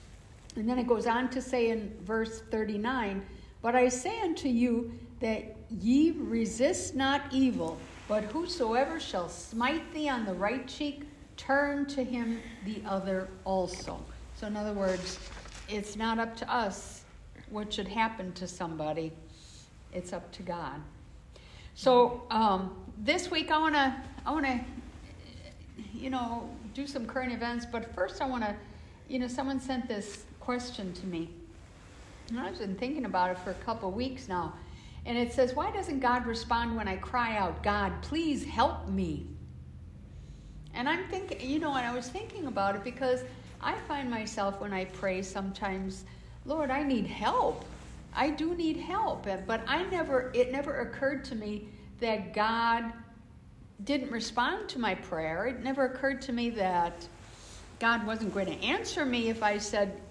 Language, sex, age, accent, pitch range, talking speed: English, female, 60-79, American, 200-265 Hz, 165 wpm